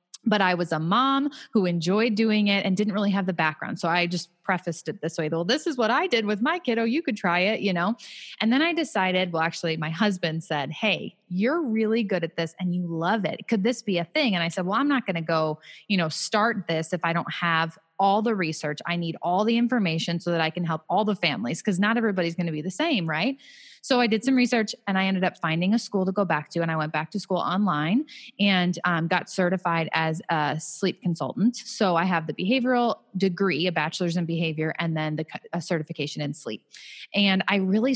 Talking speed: 245 wpm